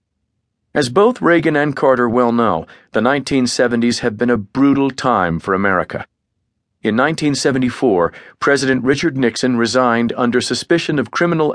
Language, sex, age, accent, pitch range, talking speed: English, male, 40-59, American, 115-135 Hz, 135 wpm